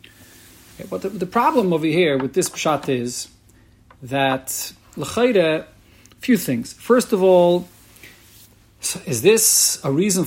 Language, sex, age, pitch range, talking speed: English, male, 40-59, 130-180 Hz, 135 wpm